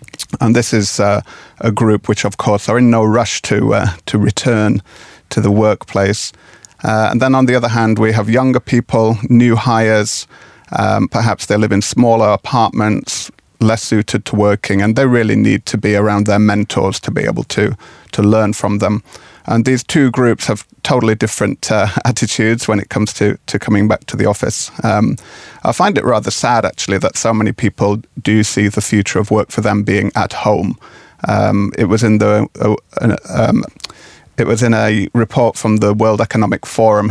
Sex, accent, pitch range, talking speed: male, British, 105-115 Hz, 190 wpm